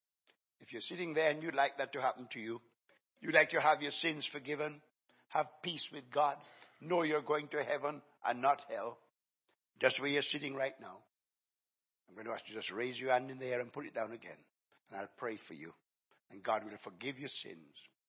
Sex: male